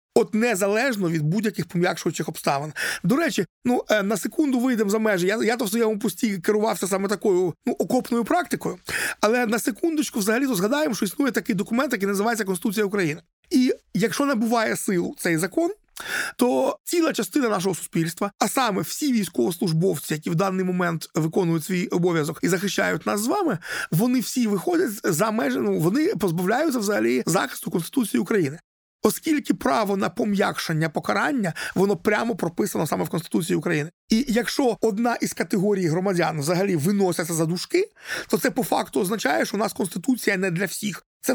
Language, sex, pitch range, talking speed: Ukrainian, male, 185-240 Hz, 165 wpm